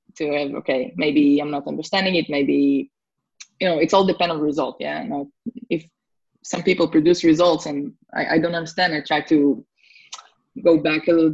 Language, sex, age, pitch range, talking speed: English, female, 20-39, 145-170 Hz, 190 wpm